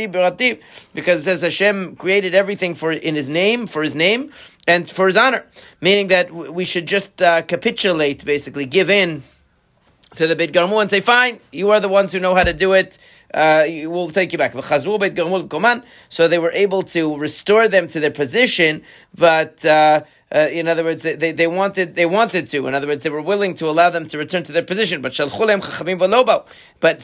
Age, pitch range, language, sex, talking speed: 40-59, 155-190 Hz, English, male, 195 wpm